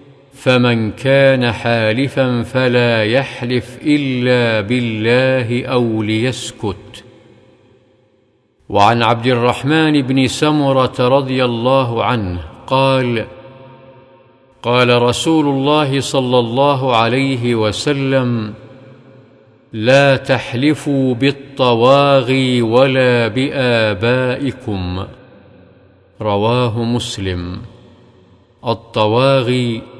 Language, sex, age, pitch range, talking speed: Arabic, male, 50-69, 115-135 Hz, 65 wpm